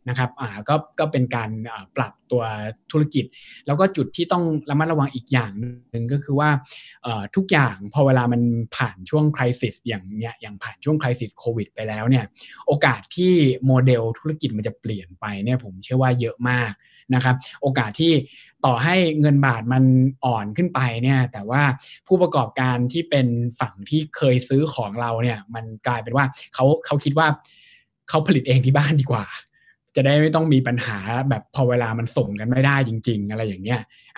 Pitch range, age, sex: 120-145 Hz, 20-39, male